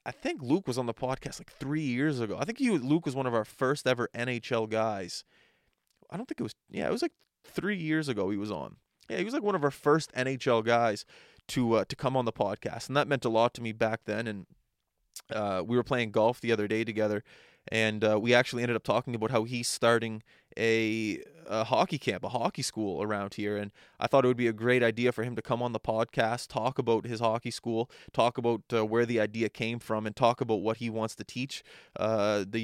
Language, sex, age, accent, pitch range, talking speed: English, male, 20-39, American, 110-135 Hz, 245 wpm